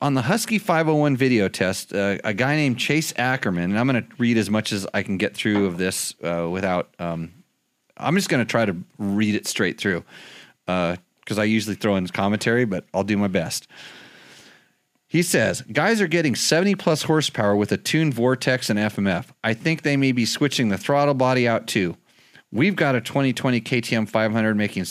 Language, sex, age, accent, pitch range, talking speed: English, male, 40-59, American, 105-140 Hz, 195 wpm